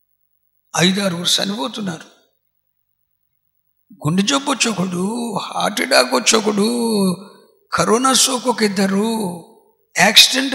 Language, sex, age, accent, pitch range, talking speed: Telugu, male, 60-79, native, 185-245 Hz, 90 wpm